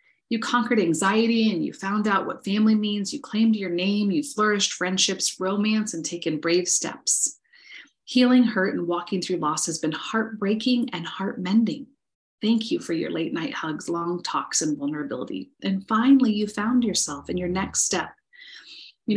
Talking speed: 170 wpm